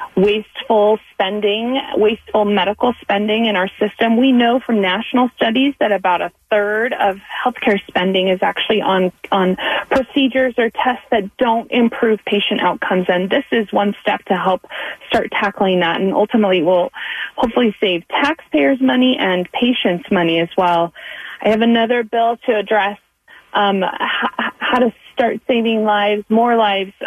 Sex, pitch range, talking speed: female, 180-225 Hz, 155 wpm